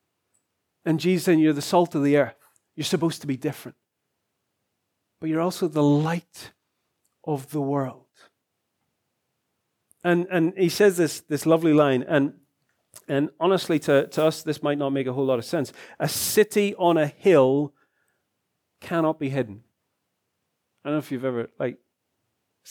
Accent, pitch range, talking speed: British, 125-160 Hz, 160 wpm